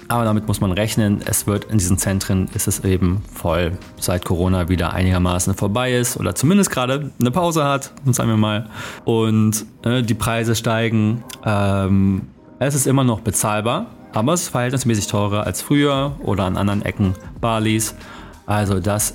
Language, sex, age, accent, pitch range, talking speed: German, male, 30-49, German, 100-120 Hz, 170 wpm